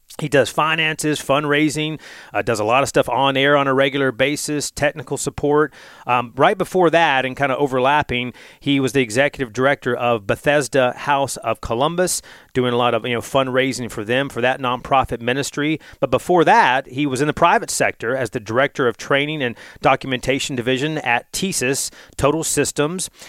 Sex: male